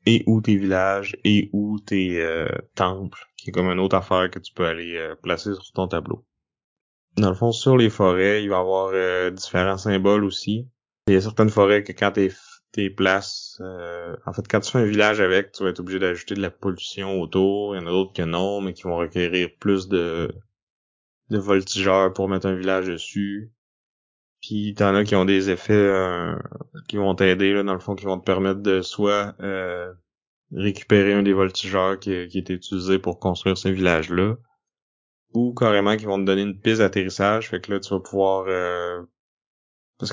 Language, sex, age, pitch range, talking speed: French, male, 20-39, 95-105 Hz, 200 wpm